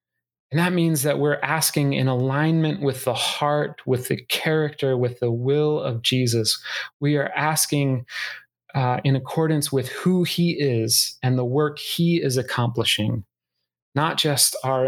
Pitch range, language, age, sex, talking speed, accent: 120-145 Hz, English, 30-49, male, 155 wpm, American